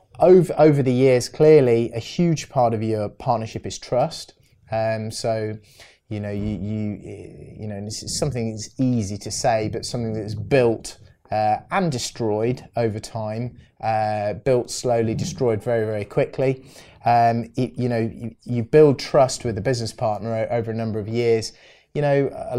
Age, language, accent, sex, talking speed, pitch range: 20-39, English, British, male, 175 wpm, 110-125 Hz